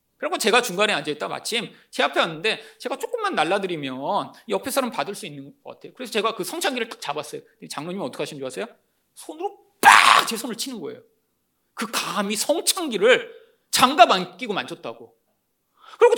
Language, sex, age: Korean, male, 40-59